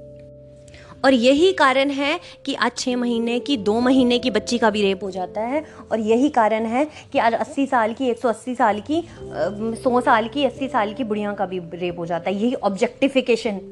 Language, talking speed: Hindi, 200 wpm